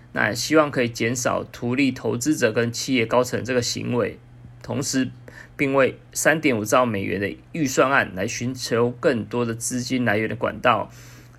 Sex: male